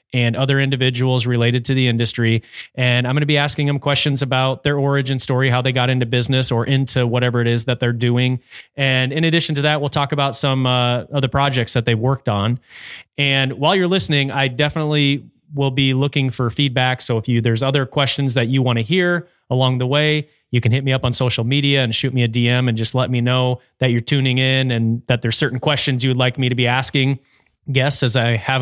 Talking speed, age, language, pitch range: 235 wpm, 30-49, English, 120-140 Hz